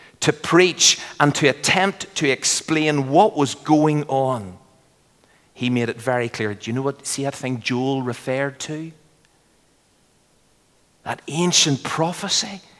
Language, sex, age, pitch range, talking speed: English, male, 40-59, 130-170 Hz, 135 wpm